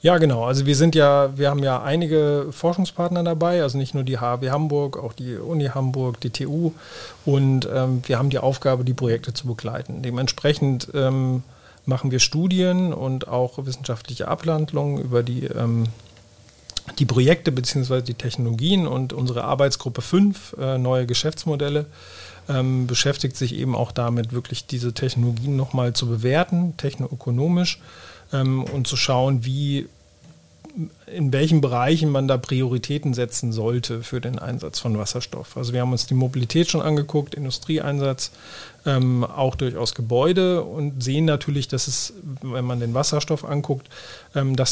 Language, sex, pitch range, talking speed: German, male, 125-150 Hz, 150 wpm